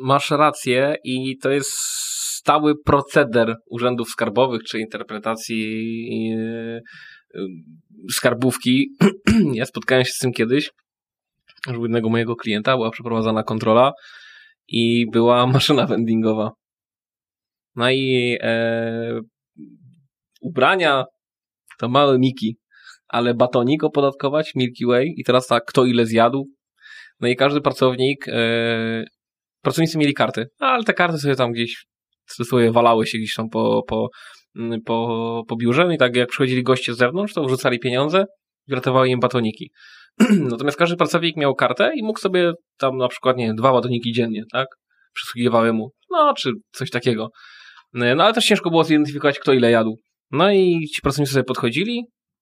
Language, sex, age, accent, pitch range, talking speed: Polish, male, 20-39, native, 115-145 Hz, 145 wpm